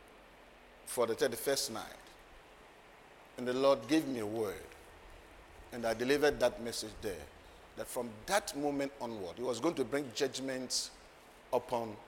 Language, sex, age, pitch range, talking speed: English, male, 50-69, 125-150 Hz, 145 wpm